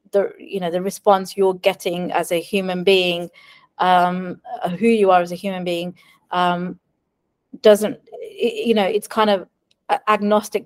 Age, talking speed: 30-49, 160 wpm